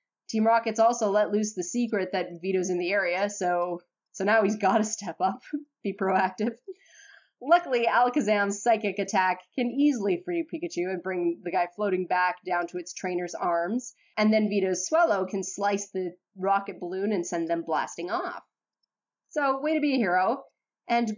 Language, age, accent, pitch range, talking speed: English, 20-39, American, 190-270 Hz, 175 wpm